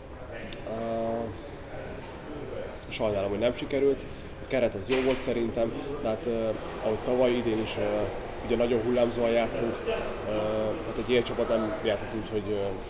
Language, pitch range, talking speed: Hungarian, 105-120 Hz, 150 wpm